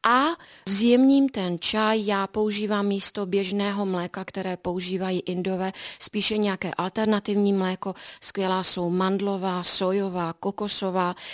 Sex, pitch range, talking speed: female, 195-240 Hz, 110 wpm